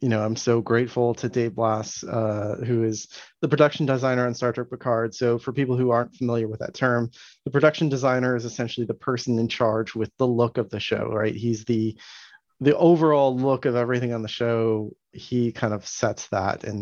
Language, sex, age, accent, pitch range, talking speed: English, male, 30-49, American, 110-125 Hz, 210 wpm